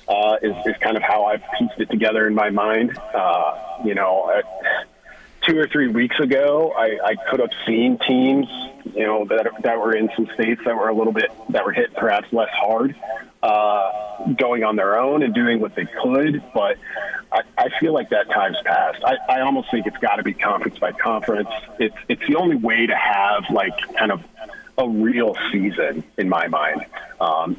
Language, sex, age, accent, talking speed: English, male, 40-59, American, 205 wpm